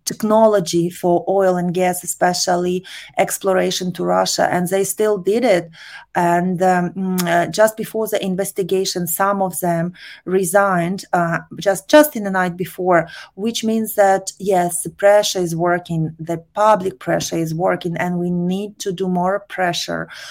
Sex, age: female, 30-49